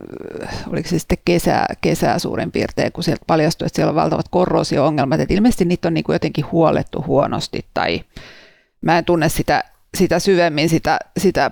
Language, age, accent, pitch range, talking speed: Finnish, 40-59, native, 165-185 Hz, 165 wpm